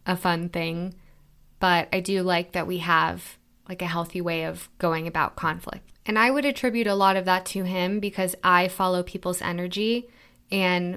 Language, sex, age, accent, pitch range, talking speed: English, female, 20-39, American, 170-190 Hz, 185 wpm